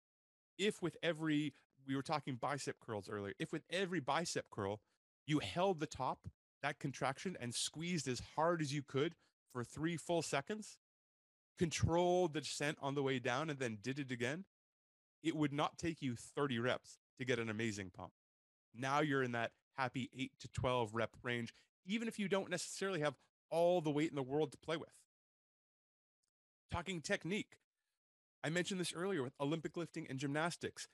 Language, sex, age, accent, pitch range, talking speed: English, male, 30-49, American, 120-165 Hz, 175 wpm